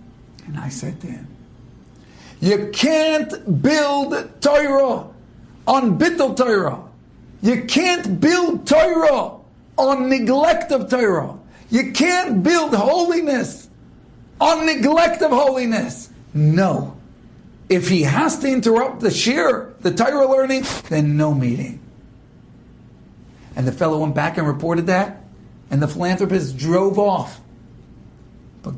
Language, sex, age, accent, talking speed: English, male, 60-79, American, 115 wpm